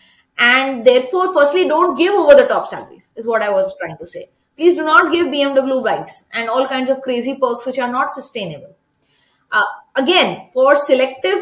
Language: English